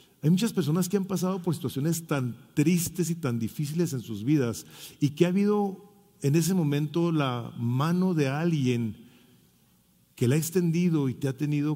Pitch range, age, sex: 120-150 Hz, 40-59, male